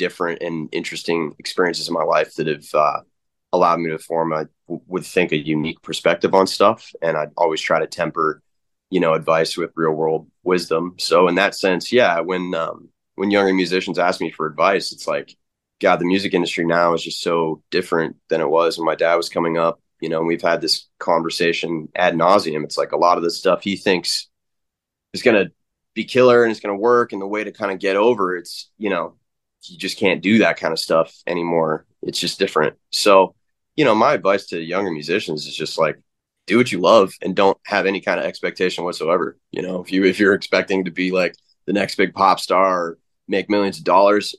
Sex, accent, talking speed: male, American, 225 wpm